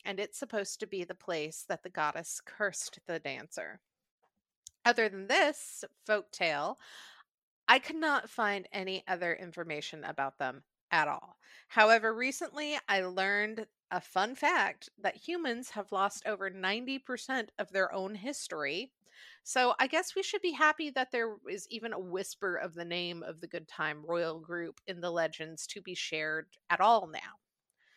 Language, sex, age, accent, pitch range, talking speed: English, female, 30-49, American, 185-285 Hz, 165 wpm